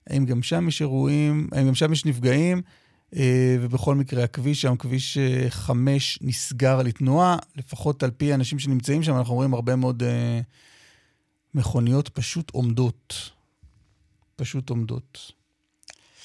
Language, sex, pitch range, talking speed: Hebrew, male, 130-165 Hz, 120 wpm